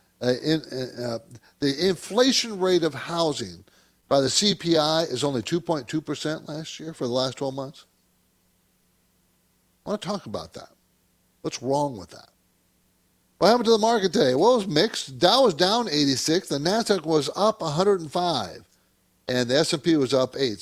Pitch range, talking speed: 115-175 Hz, 160 wpm